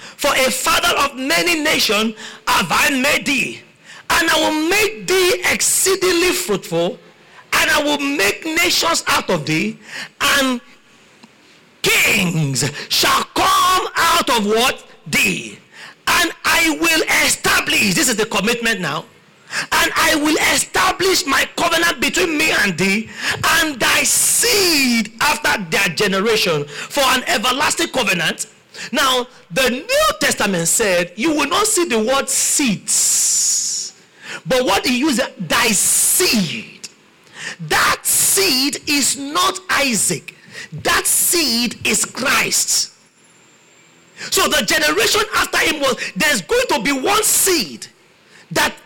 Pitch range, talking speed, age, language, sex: 225-335 Hz, 125 wpm, 40-59, English, male